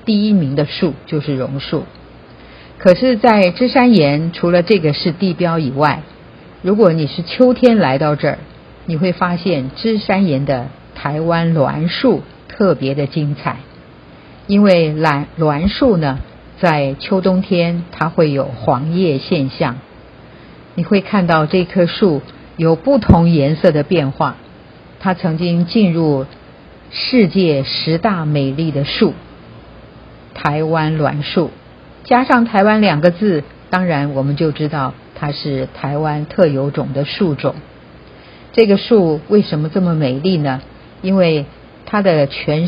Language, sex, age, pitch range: Chinese, female, 50-69, 145-190 Hz